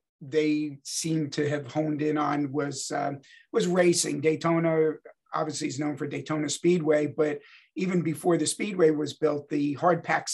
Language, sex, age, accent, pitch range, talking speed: English, male, 50-69, American, 150-175 Hz, 155 wpm